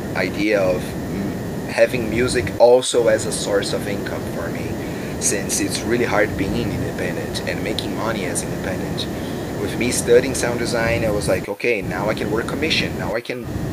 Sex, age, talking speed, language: male, 30-49, 175 wpm, English